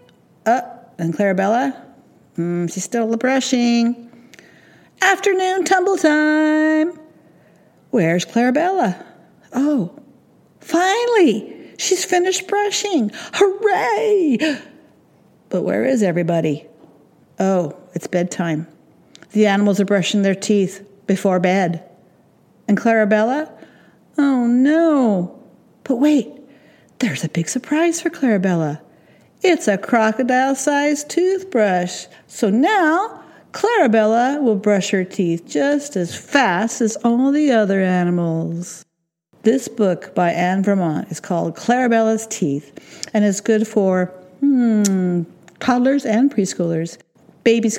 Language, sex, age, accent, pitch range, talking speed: English, female, 50-69, American, 175-270 Hz, 105 wpm